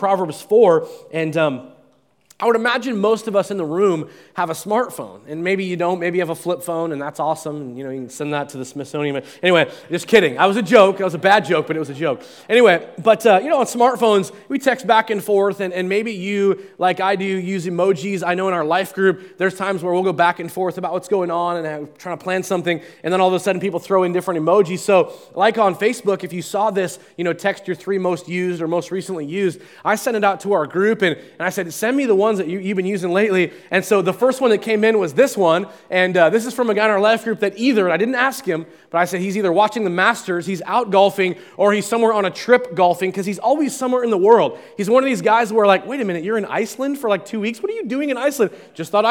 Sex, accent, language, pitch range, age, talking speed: male, American, English, 175-215 Hz, 20-39, 285 wpm